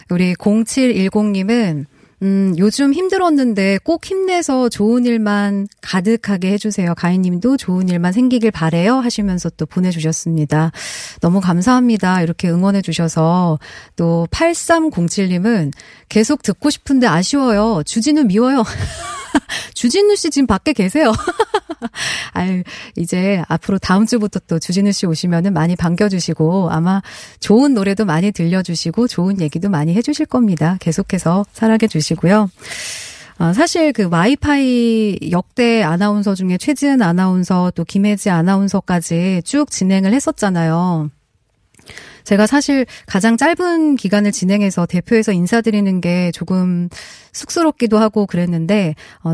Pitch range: 175-225 Hz